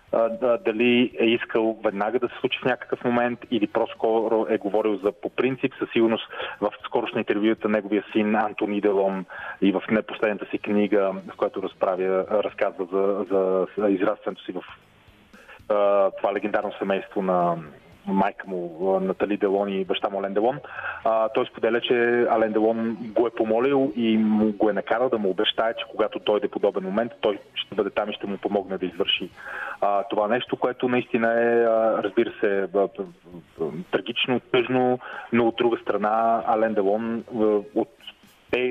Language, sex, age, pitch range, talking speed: Bulgarian, male, 30-49, 100-120 Hz, 155 wpm